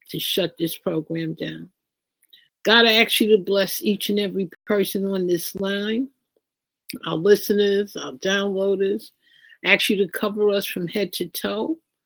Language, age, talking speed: English, 50-69, 160 wpm